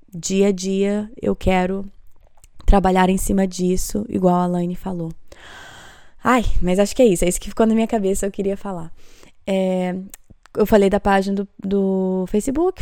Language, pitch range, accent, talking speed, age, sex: Portuguese, 185-225 Hz, Brazilian, 175 wpm, 20-39, female